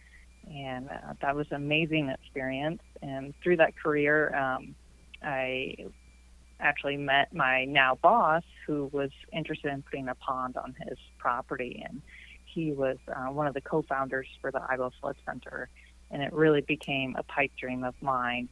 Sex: female